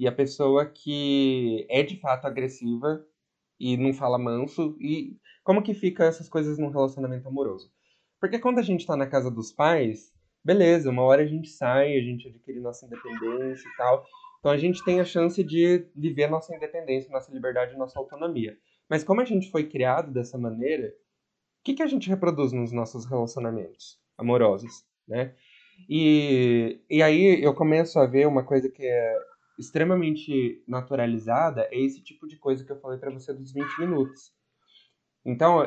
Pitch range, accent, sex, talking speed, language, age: 130-170 Hz, Brazilian, male, 170 wpm, Portuguese, 20-39